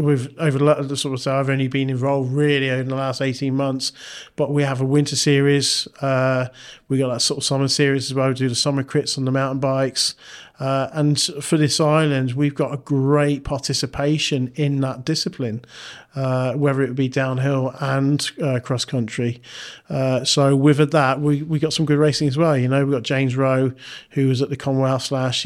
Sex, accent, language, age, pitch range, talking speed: male, British, English, 40-59, 135-150 Hz, 205 wpm